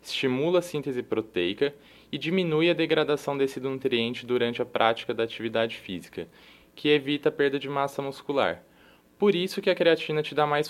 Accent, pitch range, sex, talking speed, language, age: Brazilian, 120-150 Hz, male, 175 wpm, Portuguese, 20-39